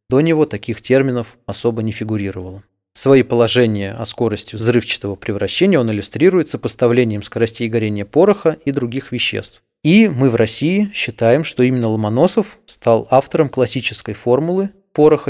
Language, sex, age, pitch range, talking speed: Russian, male, 20-39, 105-130 Hz, 135 wpm